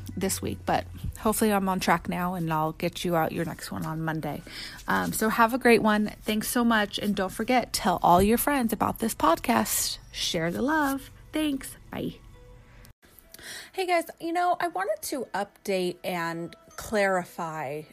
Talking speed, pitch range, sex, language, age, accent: 175 wpm, 180-235 Hz, female, English, 30-49, American